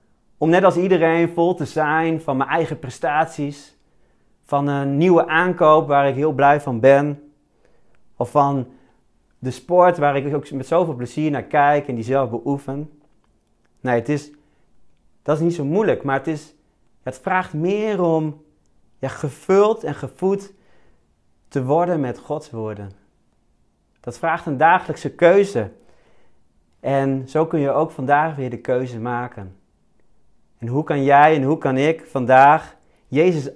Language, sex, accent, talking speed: Dutch, male, Dutch, 155 wpm